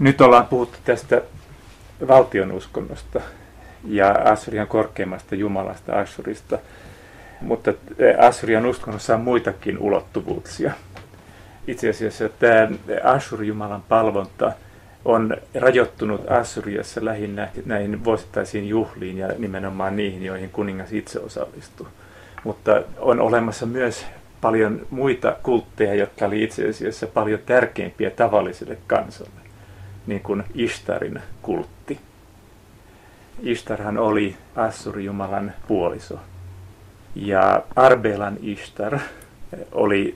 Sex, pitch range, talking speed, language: male, 100-110 Hz, 95 wpm, Finnish